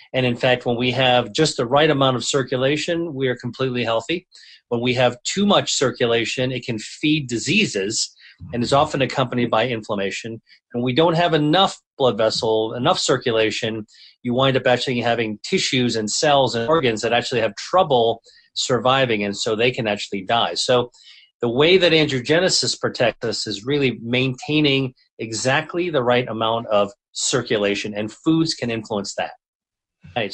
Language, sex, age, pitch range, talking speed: English, male, 40-59, 115-150 Hz, 165 wpm